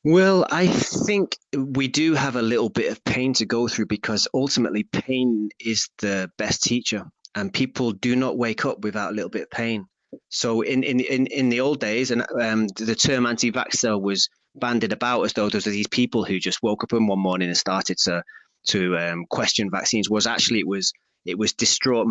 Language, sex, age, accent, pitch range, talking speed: English, male, 30-49, British, 100-120 Hz, 205 wpm